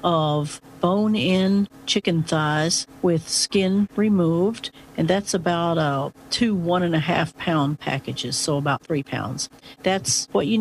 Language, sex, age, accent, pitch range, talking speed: English, female, 50-69, American, 155-200 Hz, 145 wpm